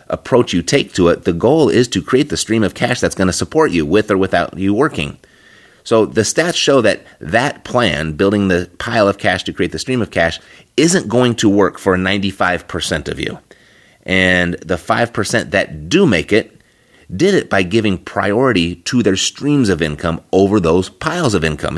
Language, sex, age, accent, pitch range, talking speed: English, male, 30-49, American, 90-115 Hz, 200 wpm